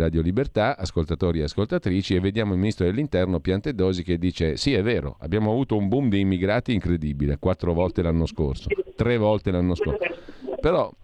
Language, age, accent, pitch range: Italian, 50-69, native, 80-105 Hz